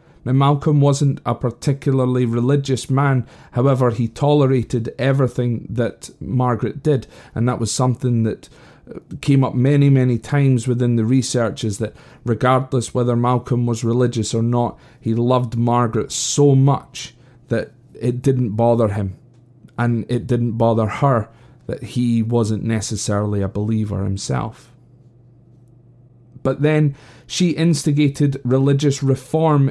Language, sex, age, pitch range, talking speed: English, male, 30-49, 120-145 Hz, 130 wpm